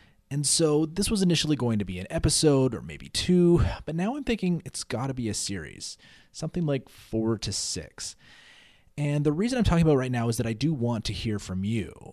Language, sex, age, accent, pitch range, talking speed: English, male, 20-39, American, 100-150 Hz, 230 wpm